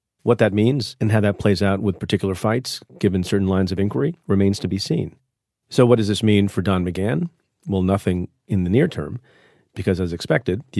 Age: 40-59